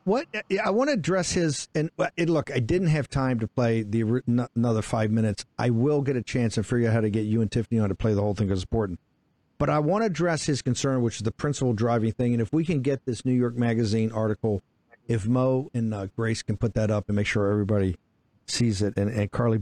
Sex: male